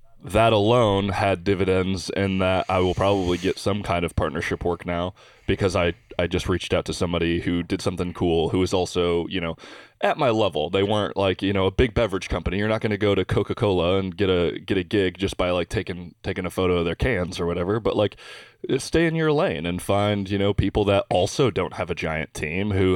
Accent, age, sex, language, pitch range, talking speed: American, 20-39, male, English, 90-105 Hz, 235 wpm